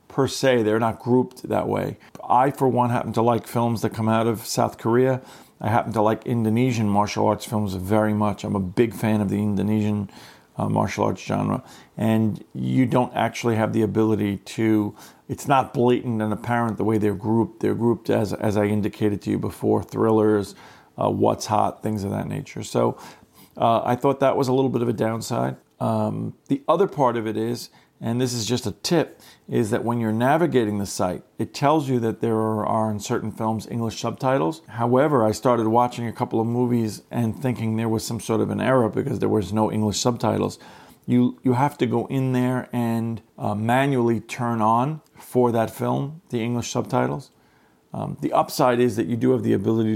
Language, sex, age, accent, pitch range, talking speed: English, male, 40-59, American, 105-120 Hz, 205 wpm